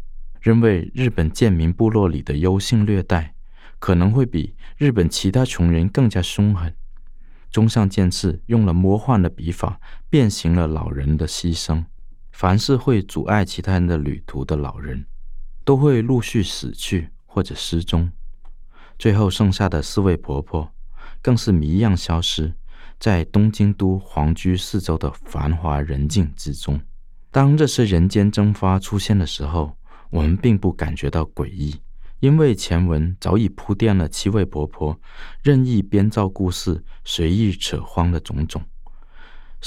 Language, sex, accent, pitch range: Chinese, male, native, 80-105 Hz